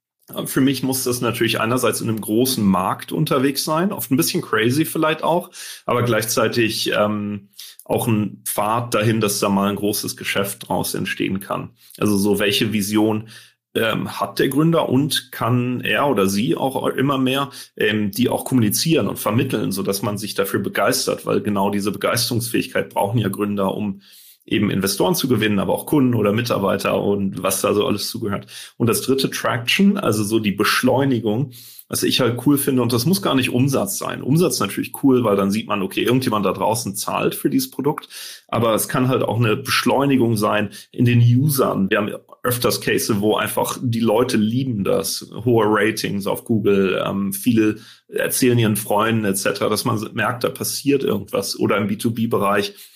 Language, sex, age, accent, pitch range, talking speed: German, male, 30-49, German, 105-130 Hz, 180 wpm